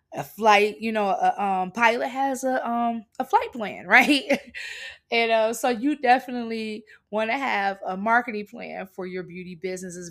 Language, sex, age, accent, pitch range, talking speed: English, female, 20-39, American, 185-230 Hz, 180 wpm